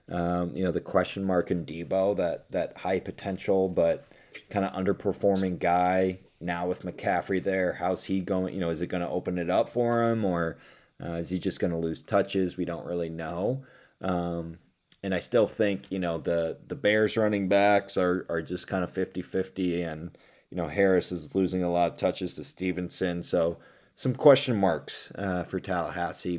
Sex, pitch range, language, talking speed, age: male, 85-100 Hz, English, 195 wpm, 20-39